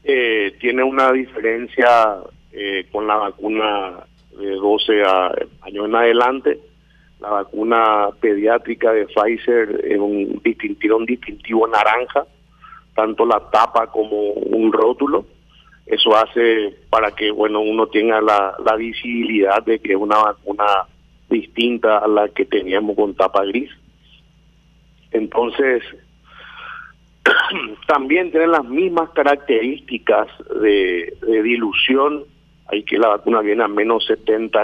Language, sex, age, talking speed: Spanish, male, 50-69, 120 wpm